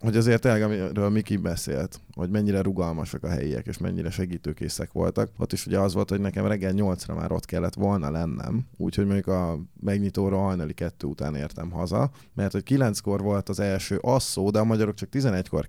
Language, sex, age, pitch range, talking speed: Hungarian, male, 20-39, 90-110 Hz, 190 wpm